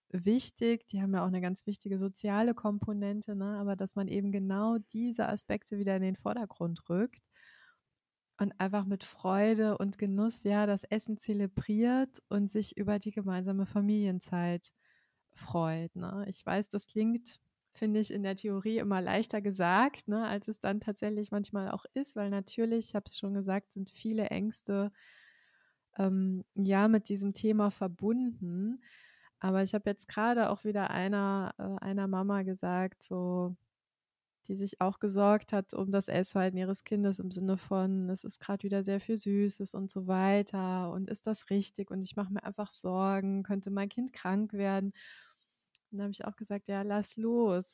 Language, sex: German, female